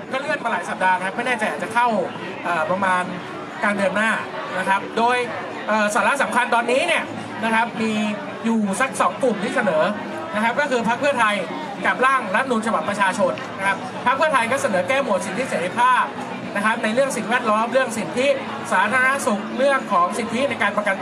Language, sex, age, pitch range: Thai, male, 20-39, 210-265 Hz